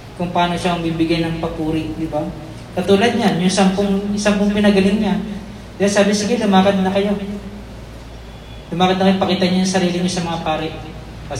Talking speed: 170 wpm